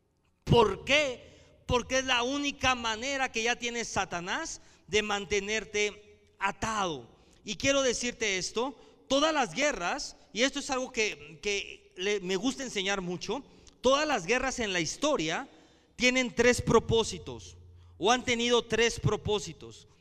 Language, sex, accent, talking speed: Spanish, male, Mexican, 135 wpm